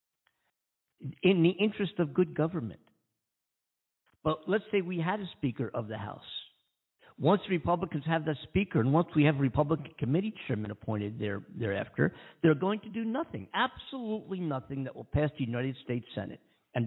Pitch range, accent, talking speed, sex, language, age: 125-175 Hz, American, 165 wpm, male, English, 50-69